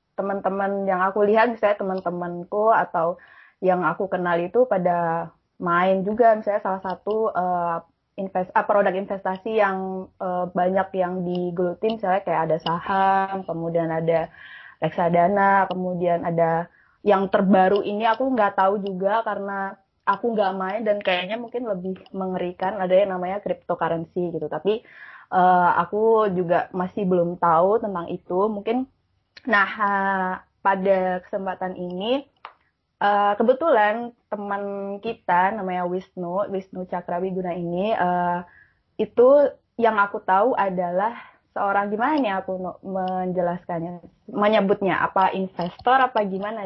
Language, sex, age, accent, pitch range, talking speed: Indonesian, female, 20-39, native, 180-205 Hz, 120 wpm